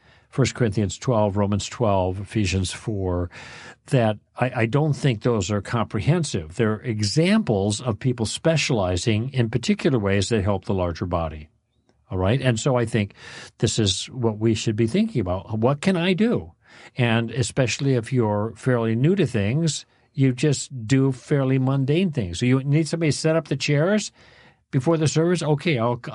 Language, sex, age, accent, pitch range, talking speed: English, male, 50-69, American, 105-130 Hz, 170 wpm